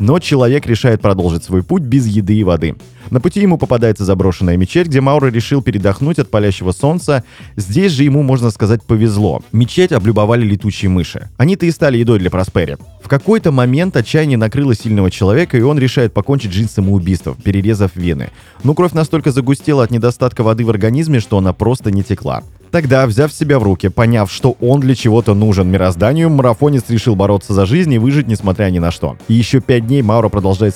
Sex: male